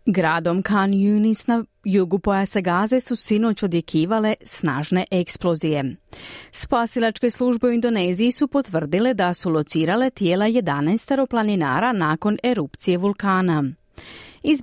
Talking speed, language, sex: 110 wpm, Croatian, female